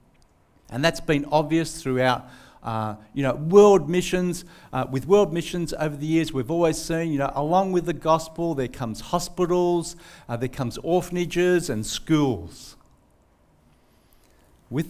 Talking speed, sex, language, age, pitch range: 145 wpm, male, English, 50-69, 120-175 Hz